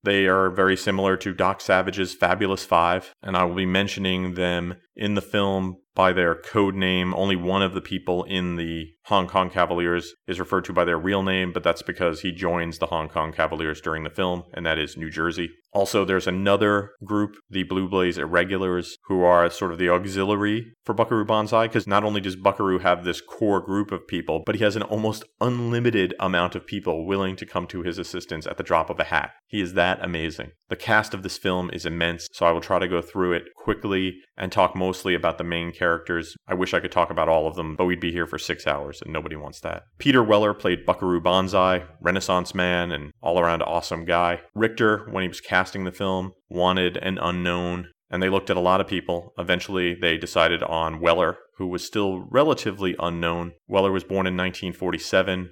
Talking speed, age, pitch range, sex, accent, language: 215 wpm, 30-49, 90-95 Hz, male, American, English